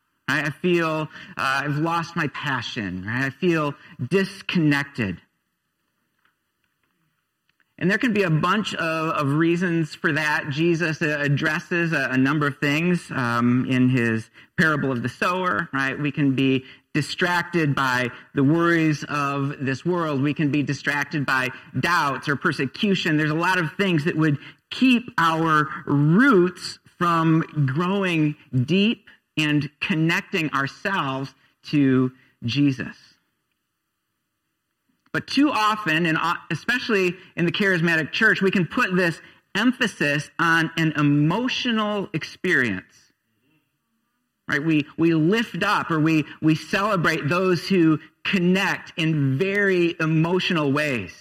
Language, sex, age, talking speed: English, male, 40-59, 125 wpm